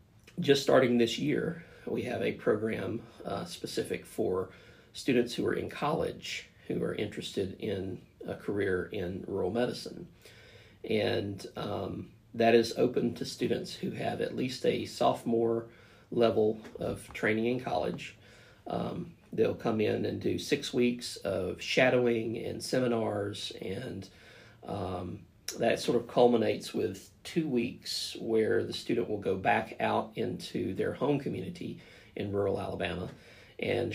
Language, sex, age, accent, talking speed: English, male, 40-59, American, 140 wpm